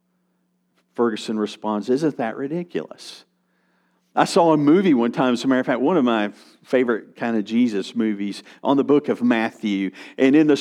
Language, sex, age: English, male, 50-69